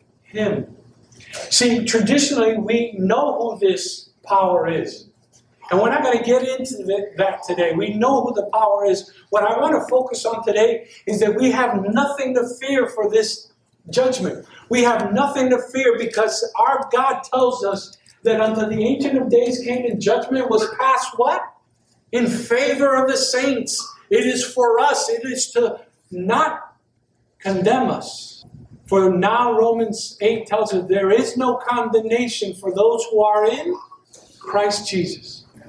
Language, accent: English, American